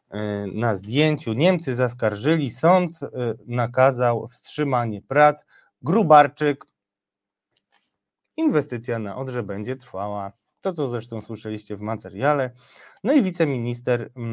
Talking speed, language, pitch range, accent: 95 wpm, Polish, 105-140 Hz, native